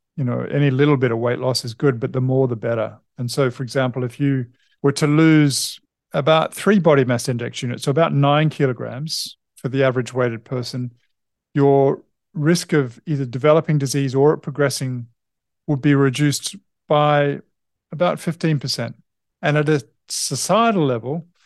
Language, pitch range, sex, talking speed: English, 125-150 Hz, male, 160 wpm